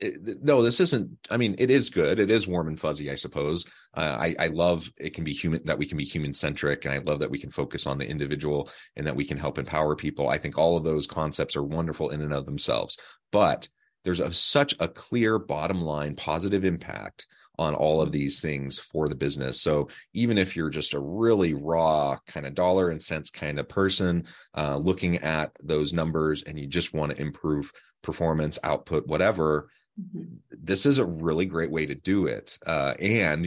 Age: 30-49